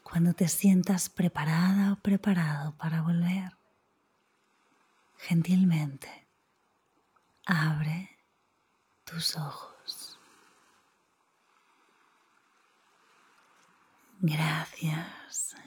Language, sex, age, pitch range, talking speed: Spanish, female, 30-49, 165-195 Hz, 50 wpm